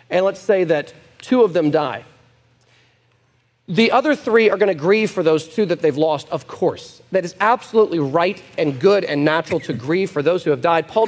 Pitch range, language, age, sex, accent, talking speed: 170-230 Hz, English, 40-59, male, American, 210 wpm